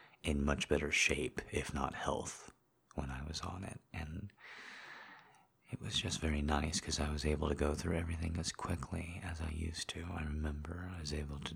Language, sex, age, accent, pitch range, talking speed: English, male, 30-49, American, 75-90 Hz, 195 wpm